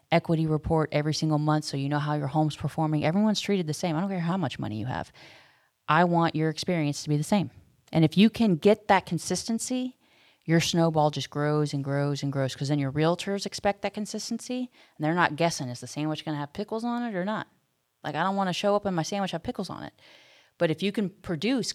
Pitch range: 145-175 Hz